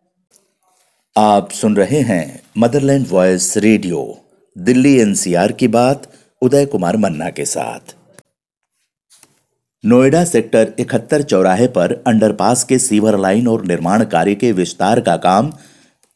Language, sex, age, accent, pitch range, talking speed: Hindi, male, 50-69, native, 95-125 Hz, 120 wpm